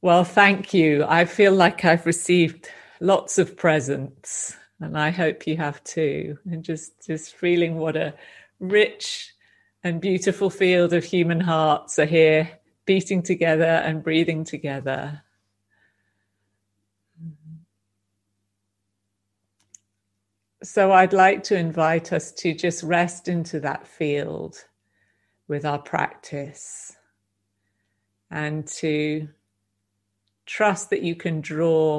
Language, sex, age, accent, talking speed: English, female, 40-59, British, 110 wpm